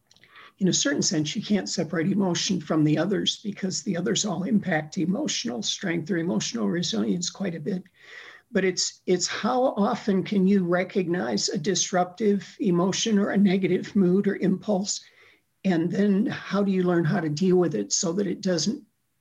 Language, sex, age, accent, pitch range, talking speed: English, male, 50-69, American, 175-200 Hz, 175 wpm